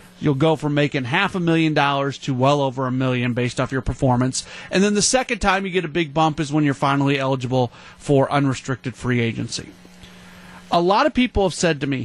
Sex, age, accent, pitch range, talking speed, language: male, 30-49, American, 130-175 Hz, 220 wpm, English